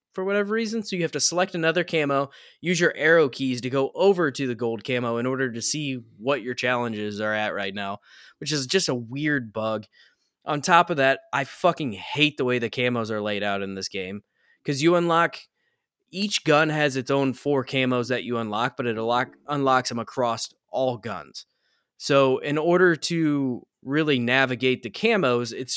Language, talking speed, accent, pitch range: English, 200 wpm, American, 125-160 Hz